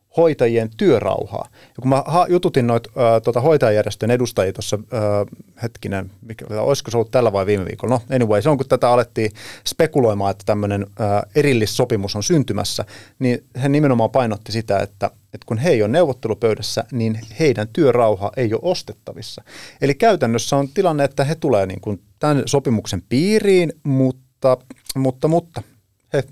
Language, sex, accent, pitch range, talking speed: Finnish, male, native, 105-130 Hz, 150 wpm